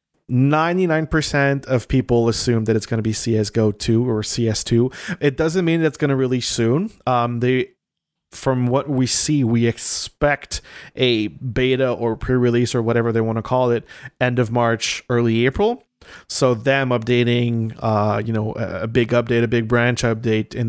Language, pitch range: English, 115-130 Hz